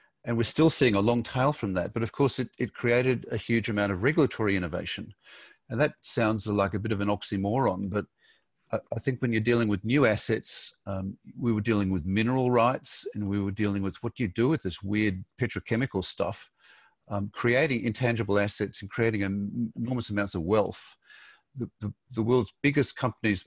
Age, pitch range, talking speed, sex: 50-69, 100-120 Hz, 195 wpm, male